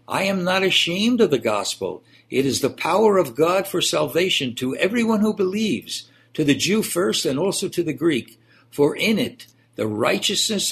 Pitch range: 125-170 Hz